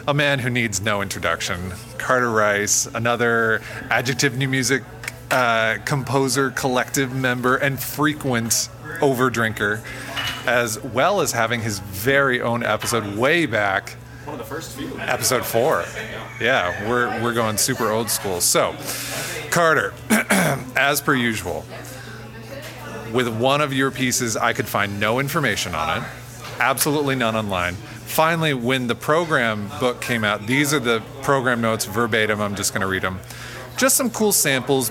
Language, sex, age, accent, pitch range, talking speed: English, male, 30-49, American, 115-135 Hz, 150 wpm